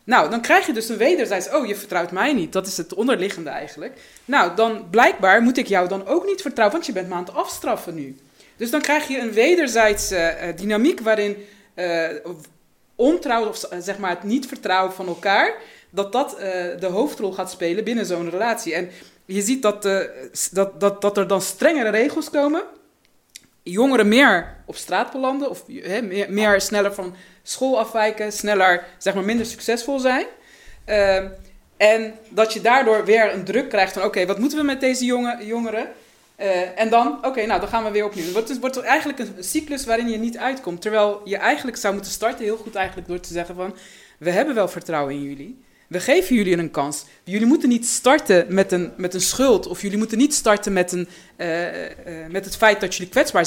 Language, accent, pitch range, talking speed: Dutch, Dutch, 185-240 Hz, 205 wpm